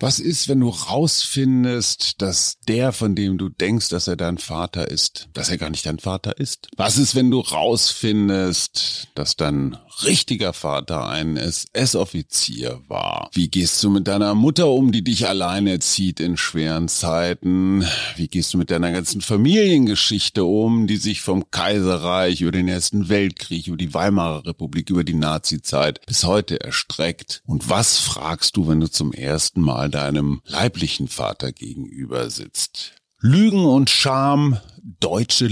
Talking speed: 155 wpm